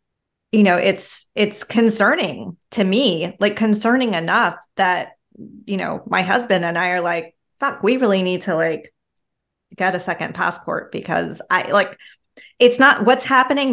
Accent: American